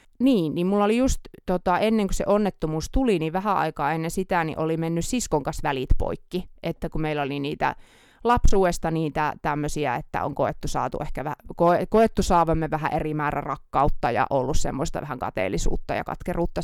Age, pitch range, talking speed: 20-39, 155-190 Hz, 185 wpm